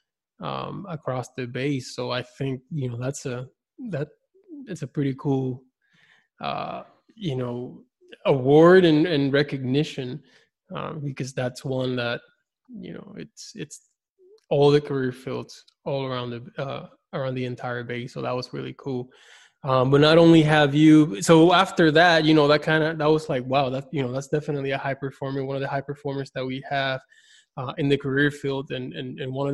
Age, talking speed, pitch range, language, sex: 20-39, 190 wpm, 135-160 Hz, English, male